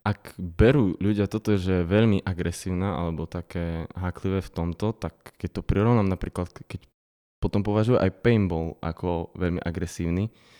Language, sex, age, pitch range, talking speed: Slovak, male, 20-39, 90-105 Hz, 145 wpm